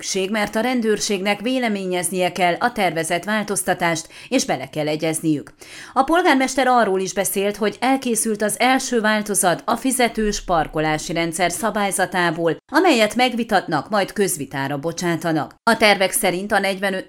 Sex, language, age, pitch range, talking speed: female, Hungarian, 30-49, 175-230 Hz, 130 wpm